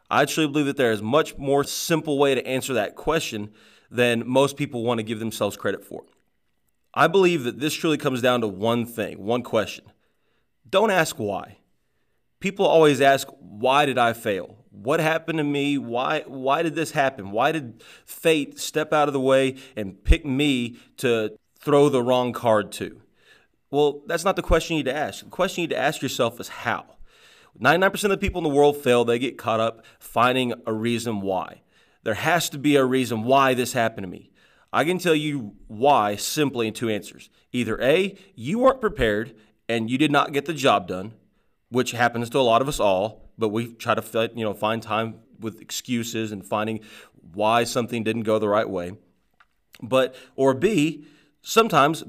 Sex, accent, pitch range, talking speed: male, American, 115-150 Hz, 195 wpm